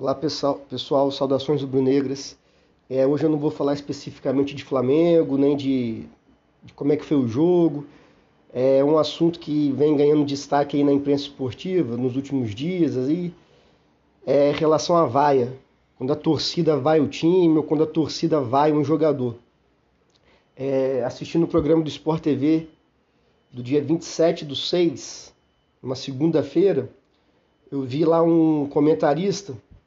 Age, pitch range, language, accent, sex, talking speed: 40-59, 140-170 Hz, Portuguese, Brazilian, male, 155 wpm